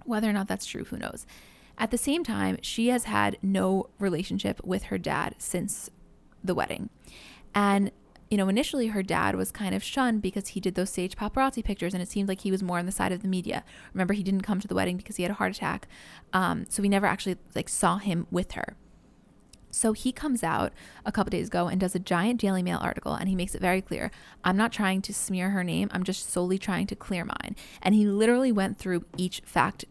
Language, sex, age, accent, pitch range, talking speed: English, female, 10-29, American, 180-205 Hz, 235 wpm